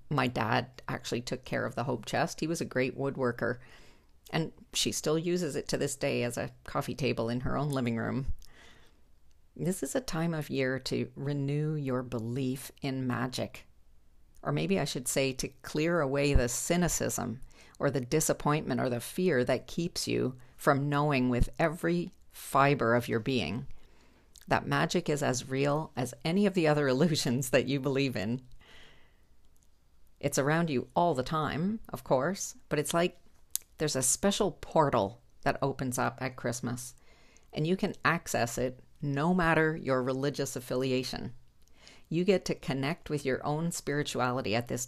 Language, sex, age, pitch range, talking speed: English, female, 50-69, 120-155 Hz, 165 wpm